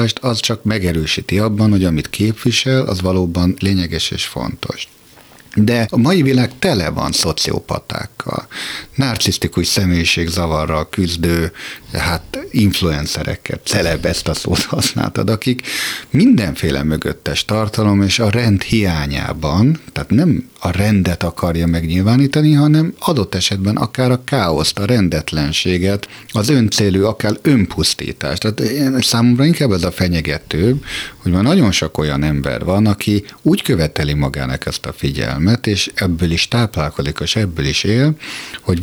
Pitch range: 85-115 Hz